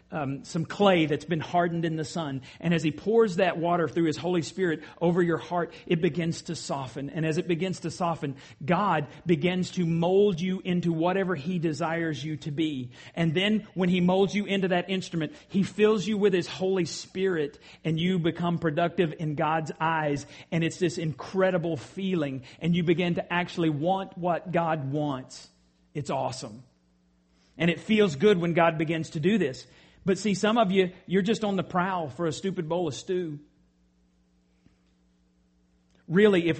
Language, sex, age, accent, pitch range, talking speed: English, male, 40-59, American, 150-185 Hz, 180 wpm